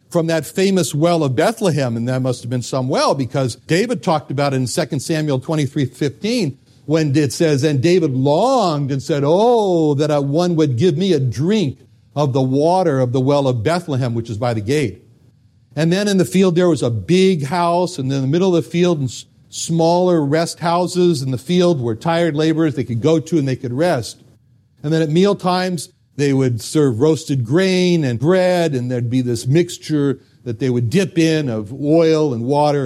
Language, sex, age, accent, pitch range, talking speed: English, male, 60-79, American, 130-175 Hz, 205 wpm